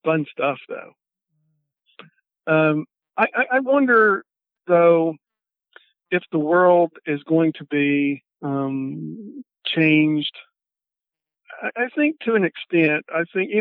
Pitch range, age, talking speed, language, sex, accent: 135-165 Hz, 50-69, 110 wpm, English, male, American